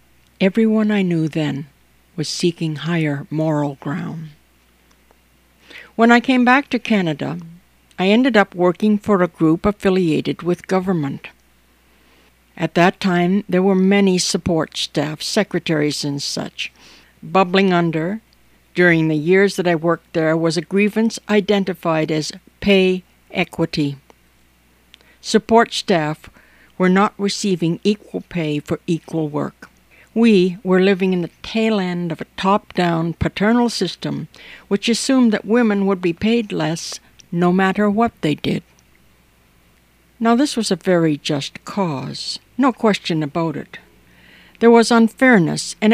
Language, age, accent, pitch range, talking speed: English, 60-79, American, 155-200 Hz, 135 wpm